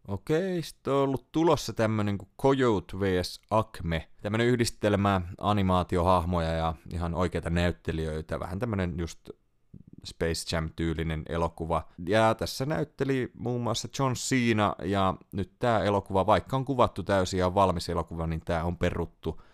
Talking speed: 140 wpm